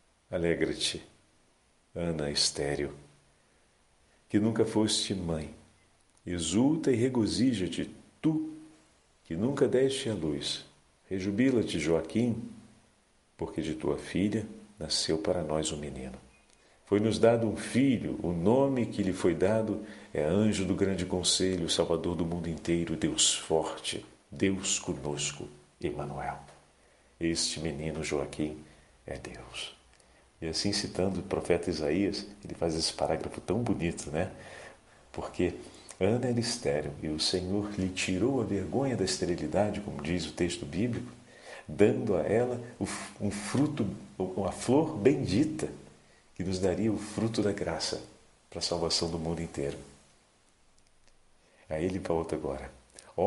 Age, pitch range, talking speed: 50-69, 80-110 Hz, 125 wpm